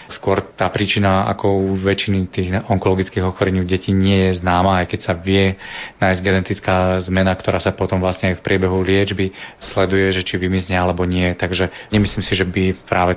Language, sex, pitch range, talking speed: Slovak, male, 95-100 Hz, 185 wpm